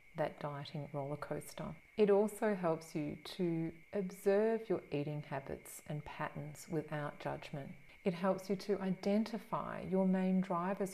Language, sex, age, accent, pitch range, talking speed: English, female, 40-59, Australian, 150-195 Hz, 135 wpm